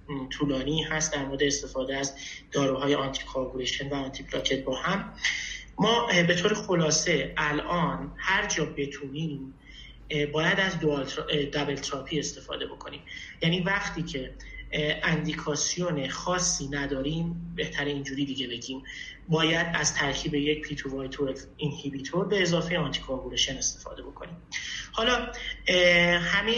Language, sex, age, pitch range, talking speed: Persian, male, 30-49, 140-175 Hz, 115 wpm